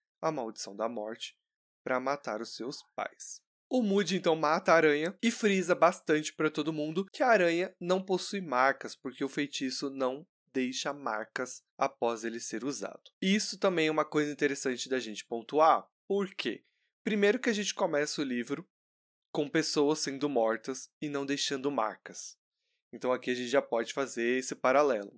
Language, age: Portuguese, 20-39